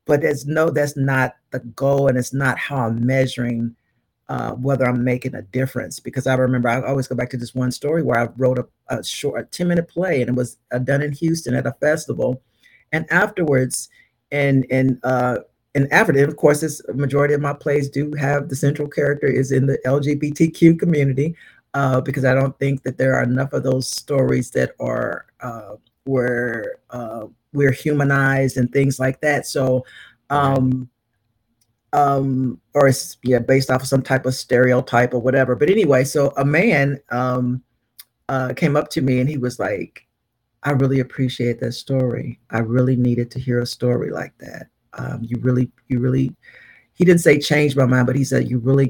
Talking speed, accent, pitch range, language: 185 wpm, American, 125-145 Hz, English